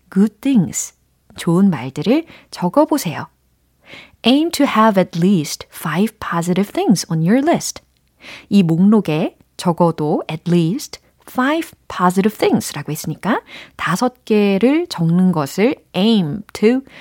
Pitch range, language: 165-235 Hz, Korean